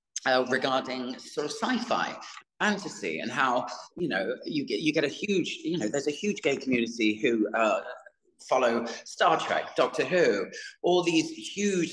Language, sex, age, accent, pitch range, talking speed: English, male, 30-49, British, 130-185 Hz, 165 wpm